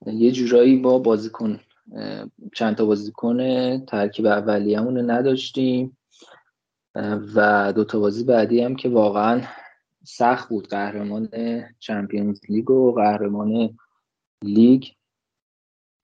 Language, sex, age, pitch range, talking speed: English, male, 20-39, 110-140 Hz, 105 wpm